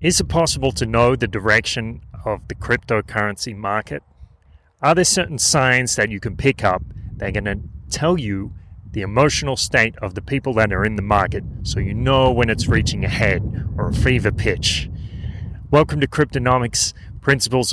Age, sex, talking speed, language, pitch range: 30-49, male, 180 wpm, English, 100-125 Hz